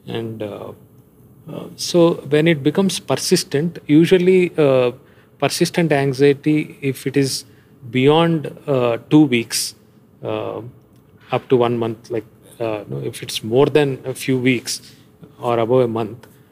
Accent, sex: Indian, male